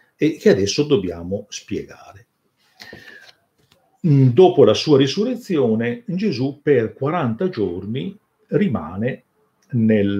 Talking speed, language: 80 wpm, Italian